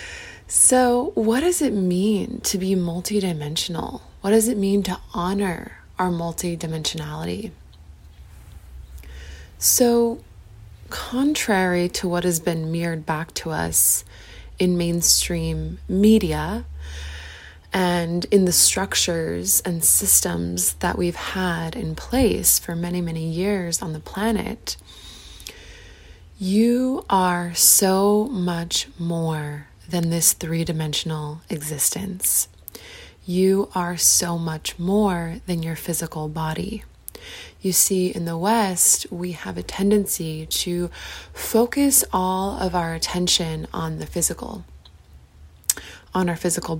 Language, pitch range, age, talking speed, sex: English, 155-190 Hz, 20-39, 110 wpm, female